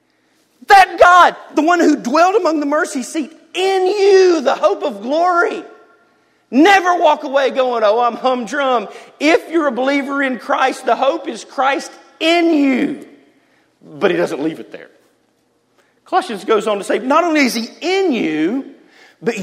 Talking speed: 165 wpm